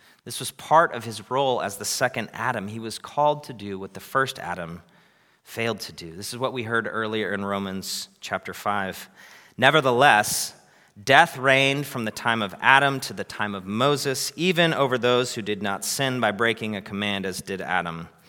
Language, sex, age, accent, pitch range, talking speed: English, male, 30-49, American, 95-130 Hz, 195 wpm